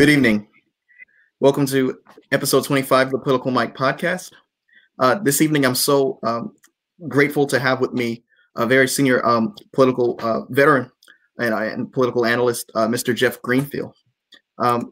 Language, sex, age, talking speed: English, male, 30-49, 150 wpm